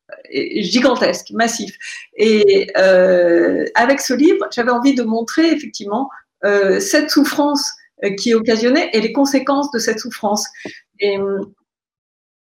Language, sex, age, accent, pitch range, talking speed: French, female, 50-69, French, 205-295 Hz, 115 wpm